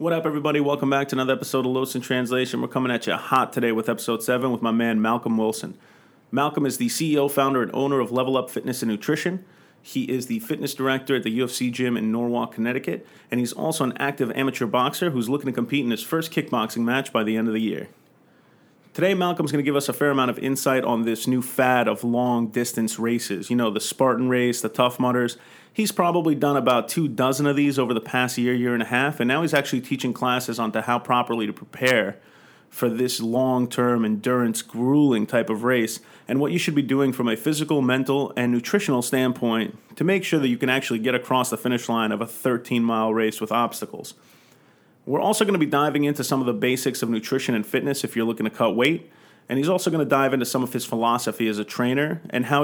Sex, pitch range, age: male, 115-140 Hz, 30-49